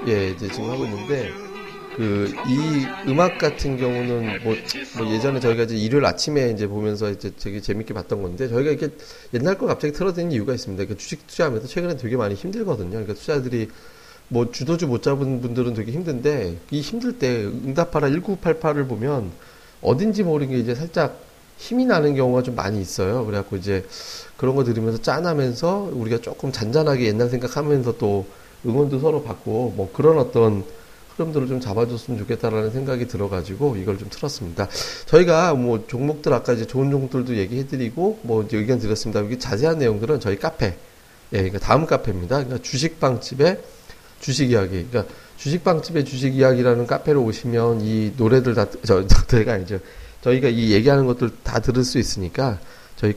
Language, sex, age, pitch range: Korean, male, 40-59, 105-140 Hz